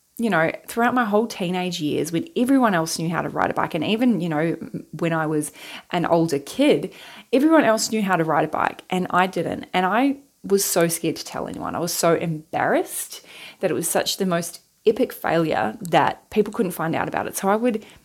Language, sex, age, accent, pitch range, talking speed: English, female, 20-39, Australian, 160-195 Hz, 225 wpm